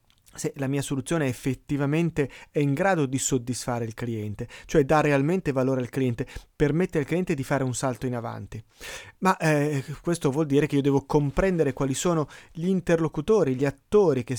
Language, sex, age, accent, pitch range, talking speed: Italian, male, 30-49, native, 130-160 Hz, 180 wpm